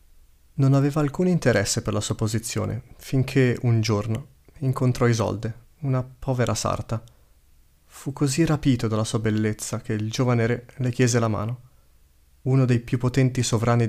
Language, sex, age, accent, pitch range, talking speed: Italian, male, 30-49, native, 100-120 Hz, 150 wpm